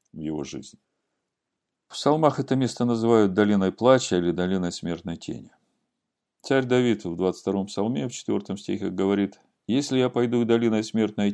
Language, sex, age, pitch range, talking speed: Russian, male, 50-69, 95-115 Hz, 150 wpm